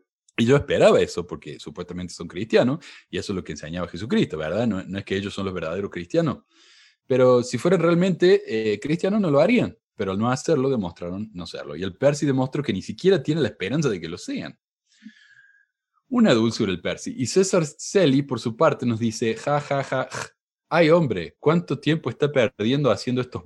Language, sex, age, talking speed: Spanish, male, 20-39, 200 wpm